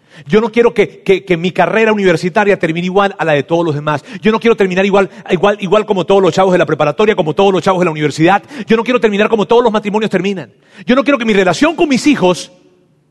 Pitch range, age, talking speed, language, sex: 160-220 Hz, 40-59, 255 wpm, Spanish, male